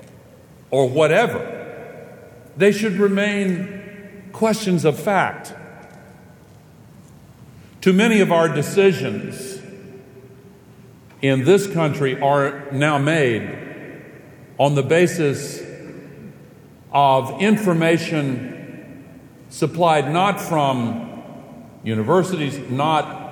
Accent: American